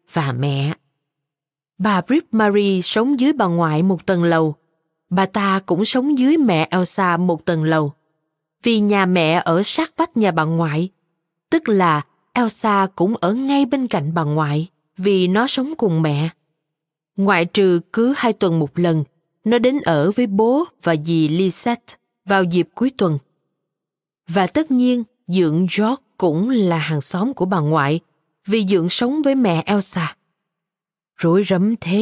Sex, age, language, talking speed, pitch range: female, 20-39, Vietnamese, 160 wpm, 165-225 Hz